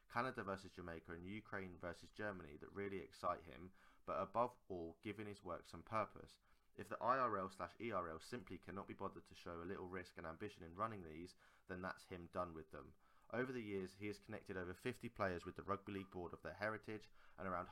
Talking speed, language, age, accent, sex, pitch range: 215 wpm, English, 20-39, British, male, 90-105 Hz